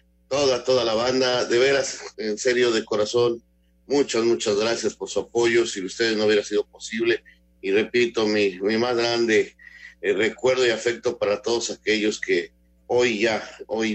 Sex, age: male, 50-69